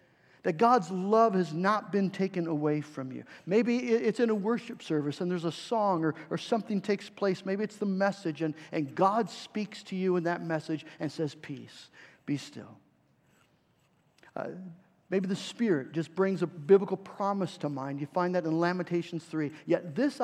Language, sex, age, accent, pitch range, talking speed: English, male, 50-69, American, 155-205 Hz, 185 wpm